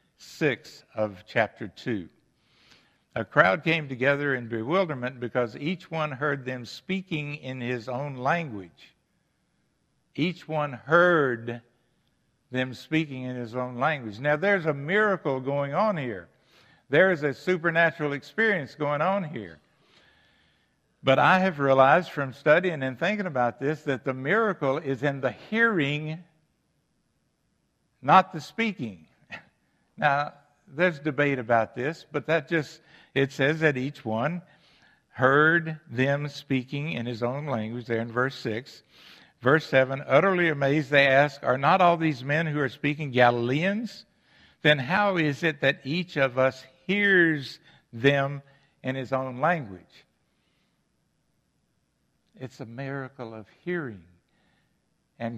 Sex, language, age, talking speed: male, English, 60-79, 135 wpm